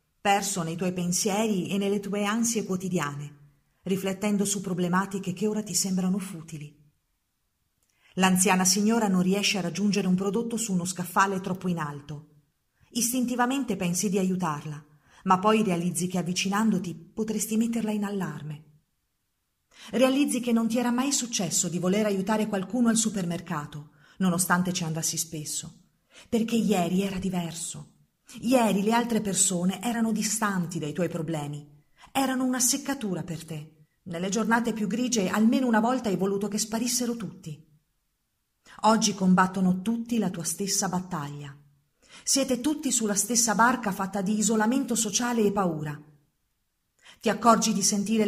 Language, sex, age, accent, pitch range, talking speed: Italian, female, 40-59, native, 175-220 Hz, 140 wpm